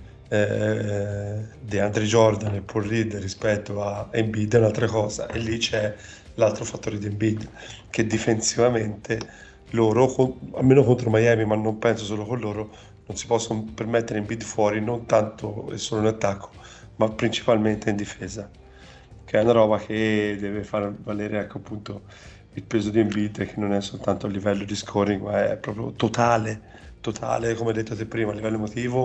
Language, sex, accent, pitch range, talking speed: Italian, male, native, 105-115 Hz, 175 wpm